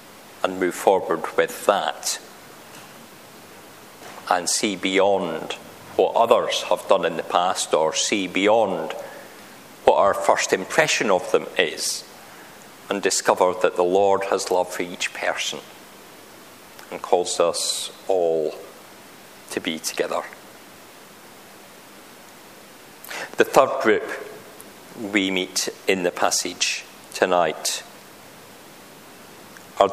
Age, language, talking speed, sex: 50-69, English, 105 wpm, male